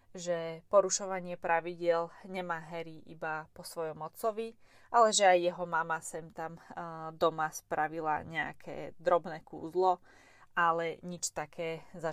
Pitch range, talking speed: 160-195 Hz, 125 wpm